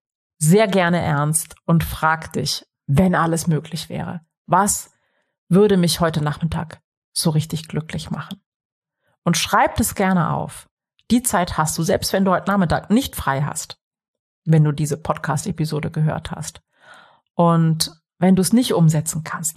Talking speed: 150 wpm